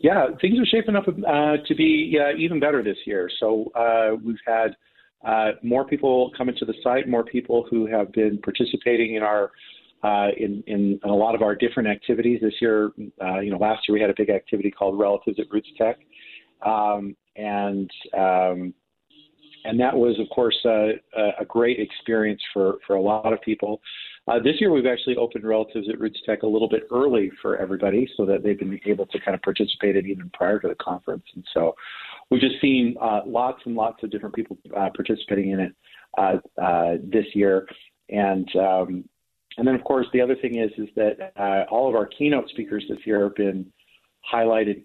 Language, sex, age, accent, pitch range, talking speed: English, male, 40-59, American, 100-120 Hz, 200 wpm